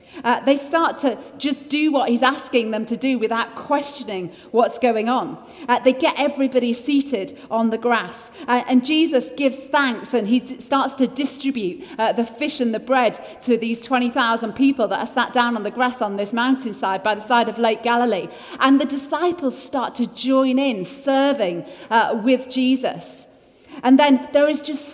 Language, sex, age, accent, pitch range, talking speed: English, female, 40-59, British, 230-275 Hz, 190 wpm